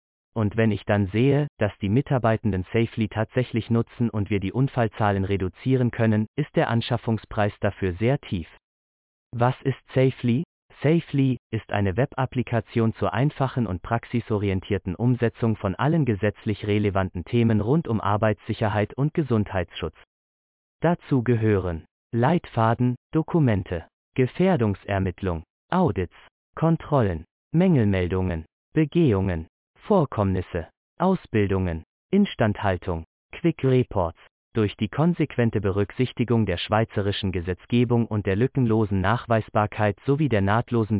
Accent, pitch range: German, 100-125 Hz